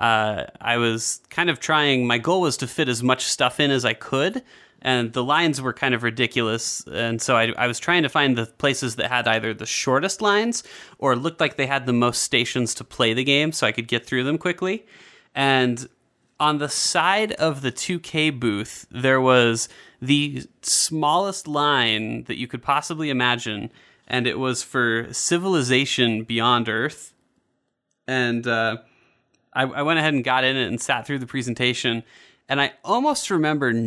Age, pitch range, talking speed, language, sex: 30-49, 120-150 Hz, 185 wpm, English, male